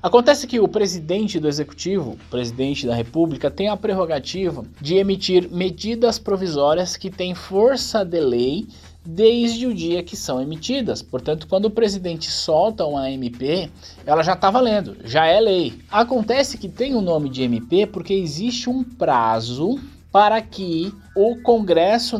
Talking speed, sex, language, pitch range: 155 wpm, male, Portuguese, 145-210 Hz